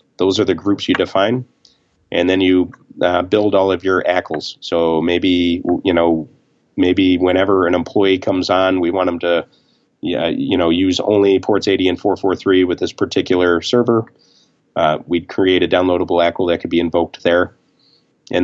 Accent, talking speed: American, 175 wpm